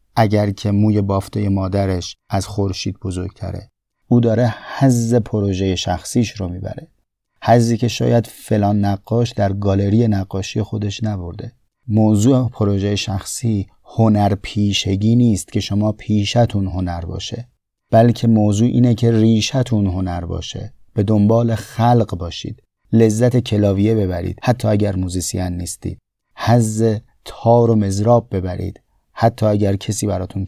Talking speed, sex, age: 125 wpm, male, 30-49